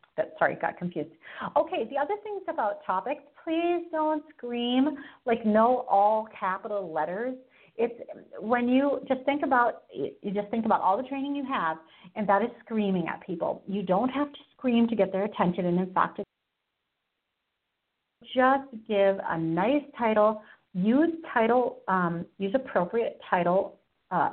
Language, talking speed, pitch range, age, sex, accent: English, 155 wpm, 190-275 Hz, 40-59, female, American